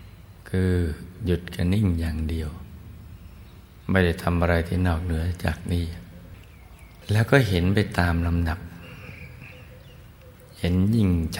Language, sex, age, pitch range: Thai, male, 60-79, 85-95 Hz